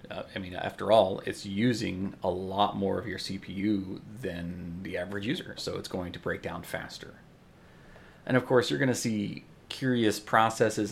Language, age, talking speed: English, 30-49, 180 wpm